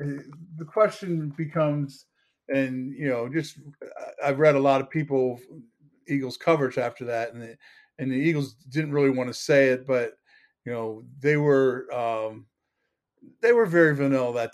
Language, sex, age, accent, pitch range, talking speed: English, male, 40-59, American, 120-145 Hz, 160 wpm